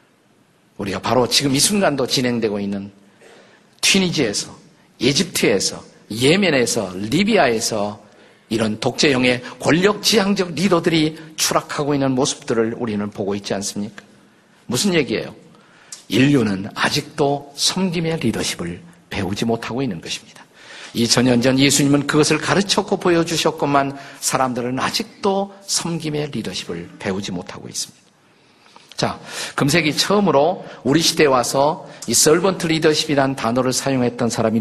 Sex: male